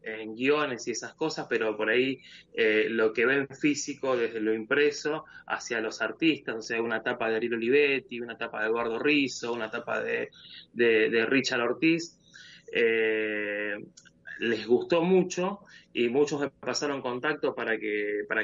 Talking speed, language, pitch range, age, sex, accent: 155 wpm, Spanish, 120-175 Hz, 20-39, male, Argentinian